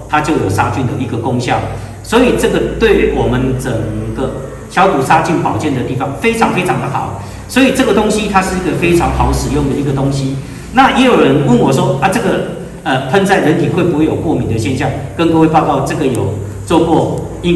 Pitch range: 130-165 Hz